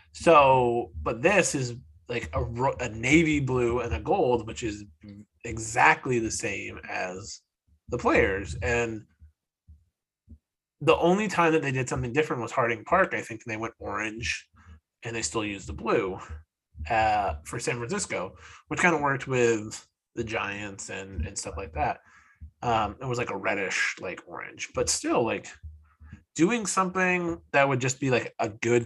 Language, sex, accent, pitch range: English, male, American, 100-130 Hz